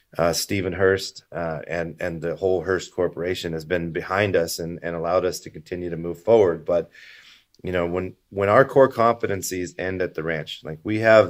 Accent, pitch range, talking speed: American, 80-95 Hz, 200 wpm